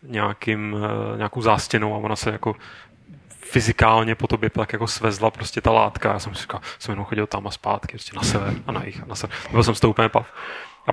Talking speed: 215 wpm